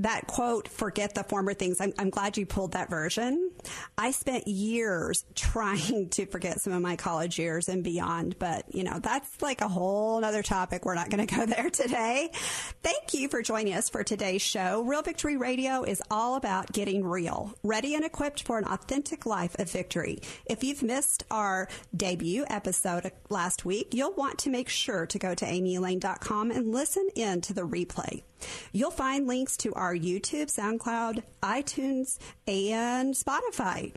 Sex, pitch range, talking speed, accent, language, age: female, 185-250 Hz, 175 wpm, American, English, 40-59